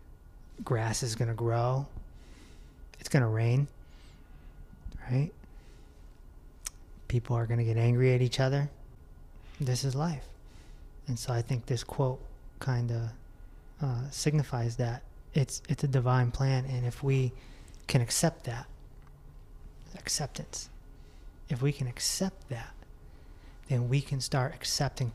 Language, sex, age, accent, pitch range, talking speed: English, male, 30-49, American, 115-155 Hz, 130 wpm